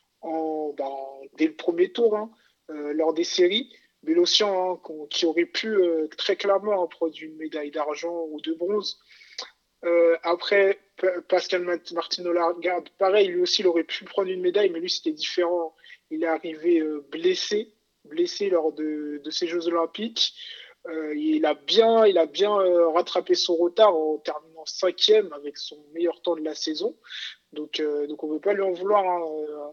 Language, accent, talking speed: French, French, 180 wpm